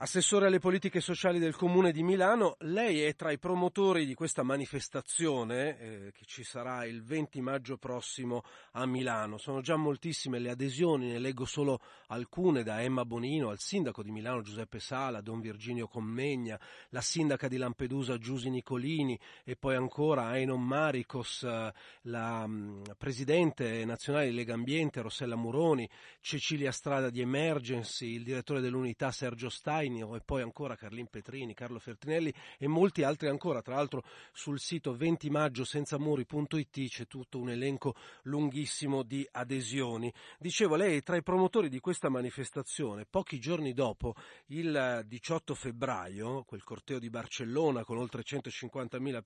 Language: Italian